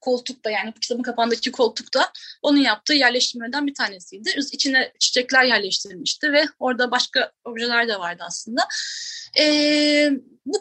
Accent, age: native, 30-49